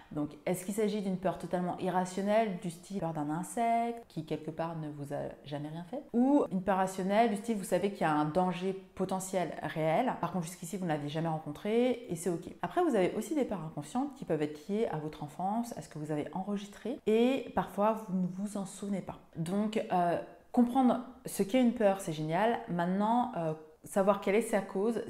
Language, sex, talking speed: French, female, 220 wpm